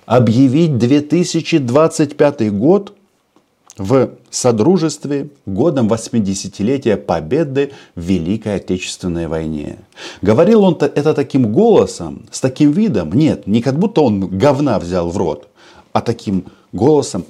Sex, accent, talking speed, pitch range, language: male, native, 110 wpm, 100-140 Hz, Russian